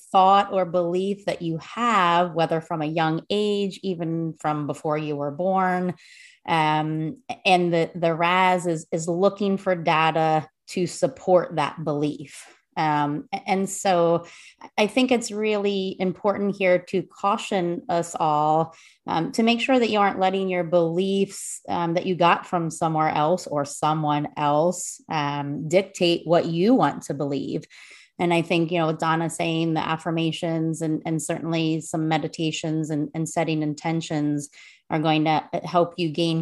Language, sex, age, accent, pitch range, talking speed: English, female, 30-49, American, 155-190 Hz, 155 wpm